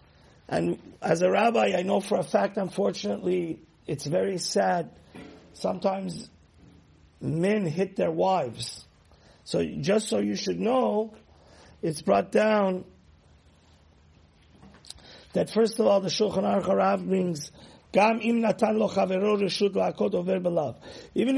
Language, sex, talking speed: English, male, 110 wpm